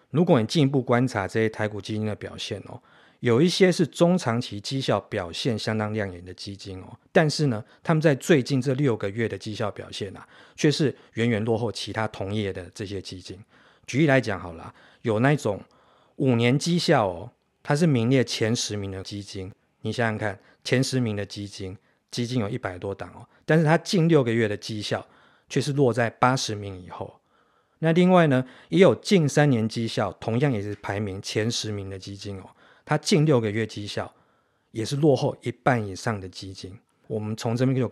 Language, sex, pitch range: Chinese, male, 100-135 Hz